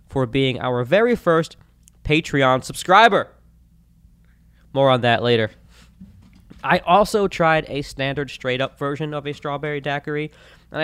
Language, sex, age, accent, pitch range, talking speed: English, male, 20-39, American, 115-155 Hz, 125 wpm